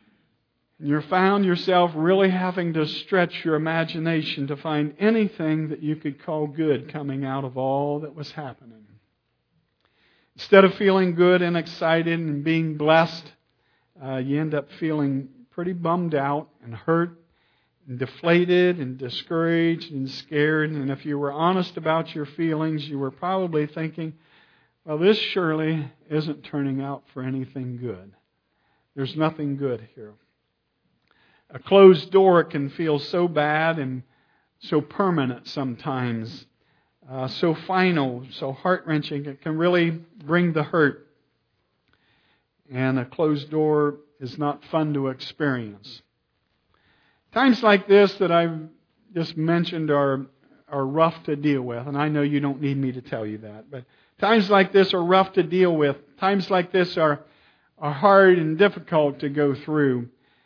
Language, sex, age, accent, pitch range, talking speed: English, male, 50-69, American, 140-170 Hz, 150 wpm